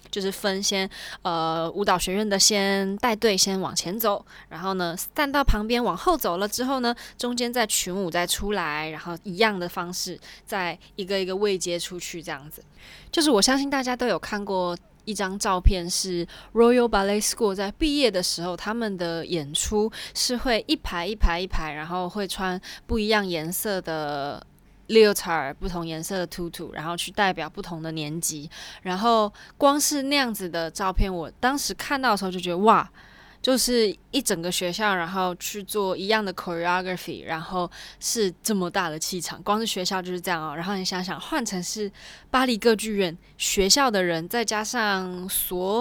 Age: 20-39